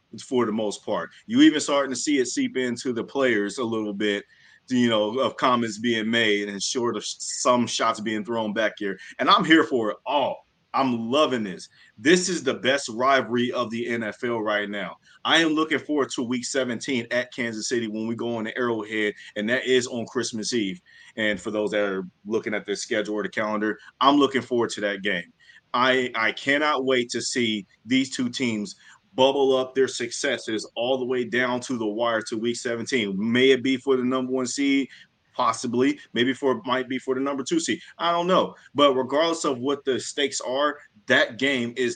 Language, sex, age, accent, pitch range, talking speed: English, male, 30-49, American, 110-135 Hz, 205 wpm